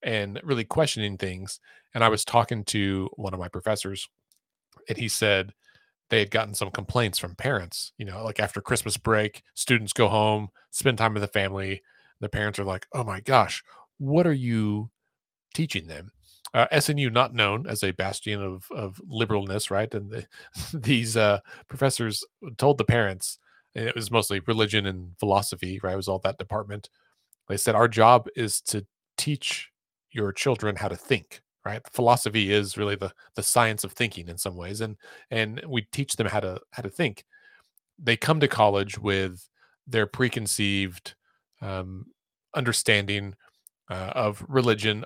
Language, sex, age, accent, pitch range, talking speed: English, male, 30-49, American, 100-120 Hz, 170 wpm